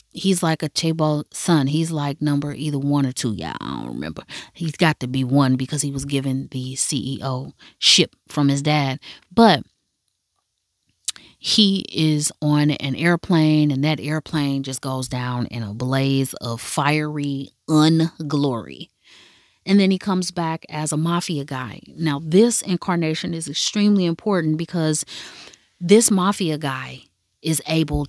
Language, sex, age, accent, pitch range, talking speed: English, female, 30-49, American, 145-175 Hz, 150 wpm